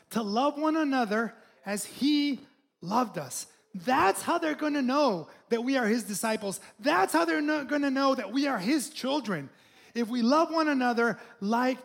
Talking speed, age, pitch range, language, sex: 180 wpm, 20-39, 220-300 Hz, English, male